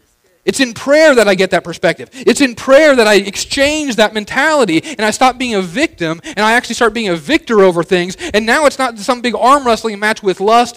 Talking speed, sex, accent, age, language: 235 wpm, male, American, 30-49, English